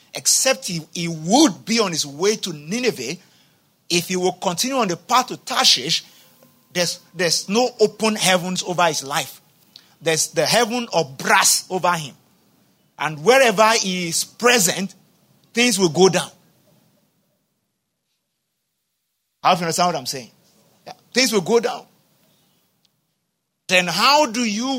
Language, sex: English, male